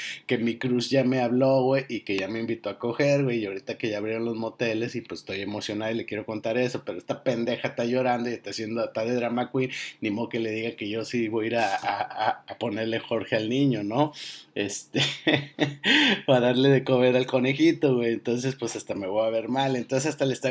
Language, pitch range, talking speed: Spanish, 115-135 Hz, 235 wpm